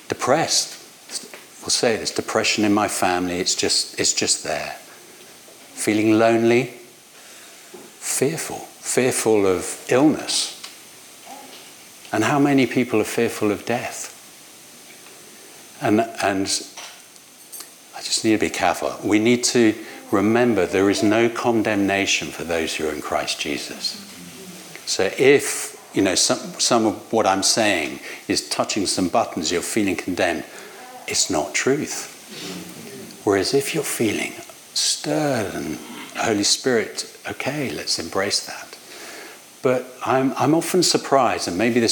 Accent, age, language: British, 60-79, English